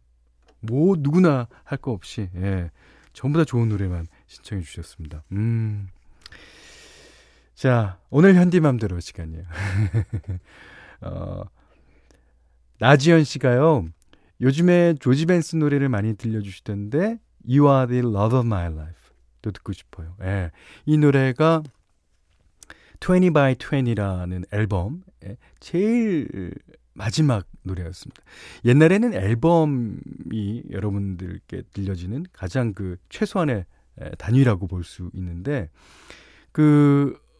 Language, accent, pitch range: Korean, native, 90-145 Hz